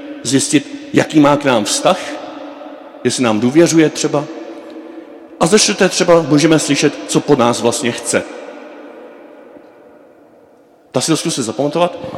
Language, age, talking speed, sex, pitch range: Czech, 50-69, 120 wpm, male, 135-185 Hz